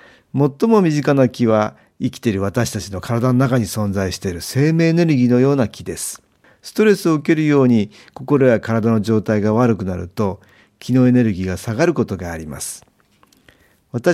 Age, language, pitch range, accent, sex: 50-69, Japanese, 100-130 Hz, native, male